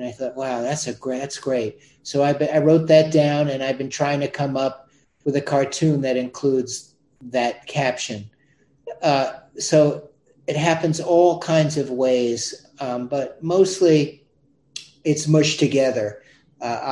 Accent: American